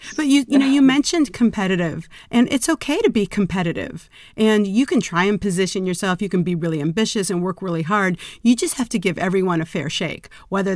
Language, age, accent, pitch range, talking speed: English, 40-59, American, 170-205 Hz, 220 wpm